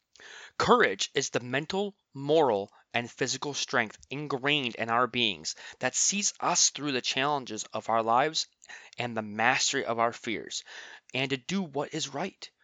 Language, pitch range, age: English, 125-160 Hz, 20-39